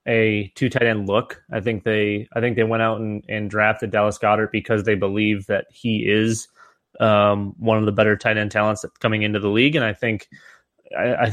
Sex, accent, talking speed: male, American, 210 wpm